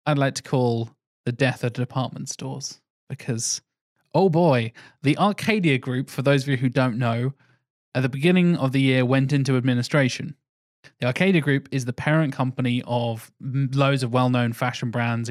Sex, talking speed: male, 175 wpm